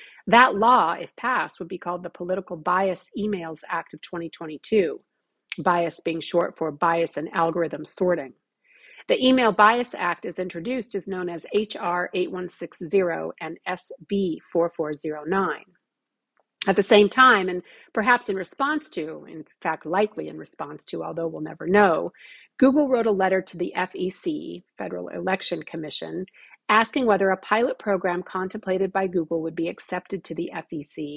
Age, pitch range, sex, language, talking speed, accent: 40-59, 170-205 Hz, female, English, 150 wpm, American